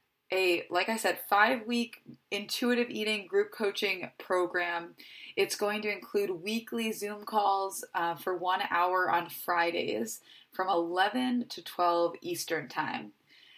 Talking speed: 130 wpm